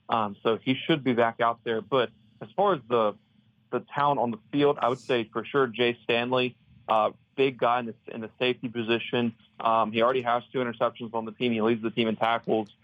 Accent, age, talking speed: American, 30-49, 230 wpm